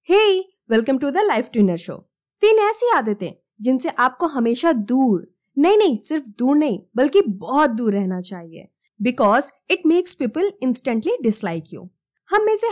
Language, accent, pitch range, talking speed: Hindi, native, 205-345 Hz, 125 wpm